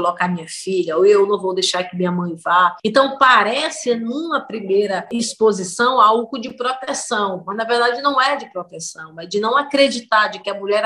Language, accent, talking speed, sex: Portuguese, Brazilian, 195 wpm, female